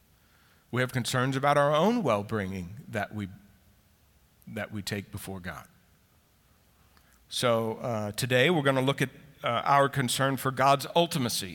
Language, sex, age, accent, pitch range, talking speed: English, male, 50-69, American, 110-150 Hz, 150 wpm